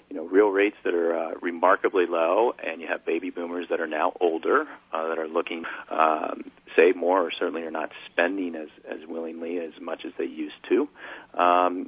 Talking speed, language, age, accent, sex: 205 wpm, English, 40-59, American, male